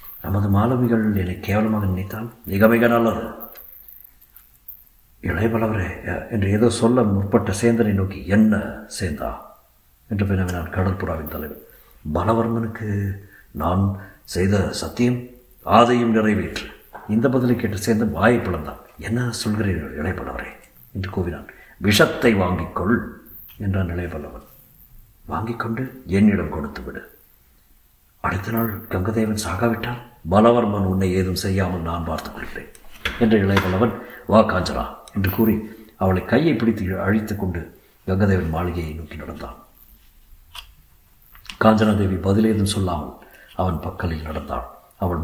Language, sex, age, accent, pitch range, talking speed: Tamil, male, 60-79, native, 95-115 Hz, 105 wpm